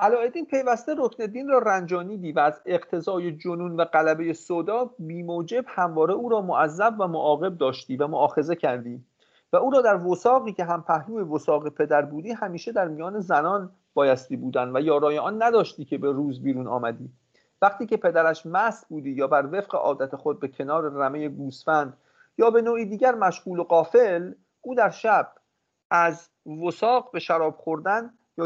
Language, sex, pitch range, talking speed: English, male, 150-210 Hz, 170 wpm